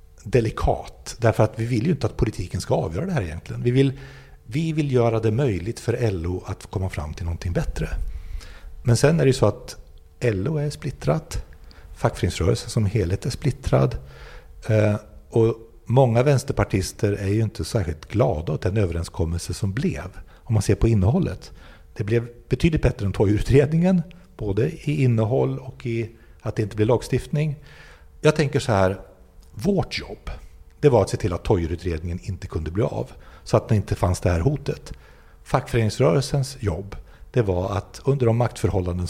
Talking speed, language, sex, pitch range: 170 wpm, Swedish, male, 90-125 Hz